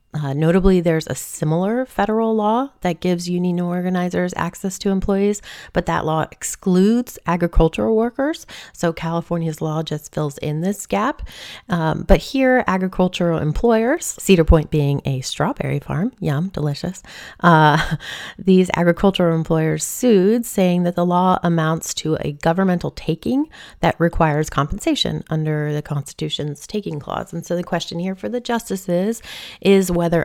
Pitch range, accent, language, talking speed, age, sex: 155-195 Hz, American, English, 145 wpm, 30-49, female